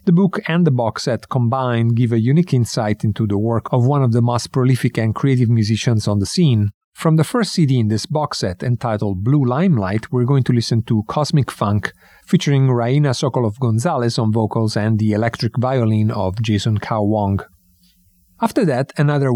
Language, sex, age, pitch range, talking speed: English, male, 40-59, 110-140 Hz, 185 wpm